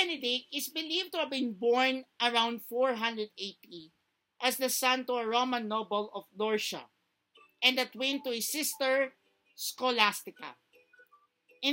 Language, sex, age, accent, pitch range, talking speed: Filipino, male, 50-69, native, 220-285 Hz, 135 wpm